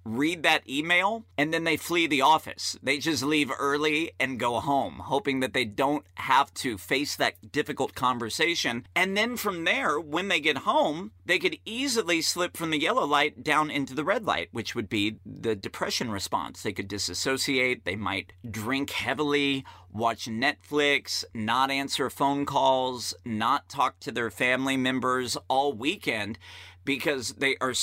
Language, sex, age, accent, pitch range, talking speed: English, male, 40-59, American, 115-150 Hz, 165 wpm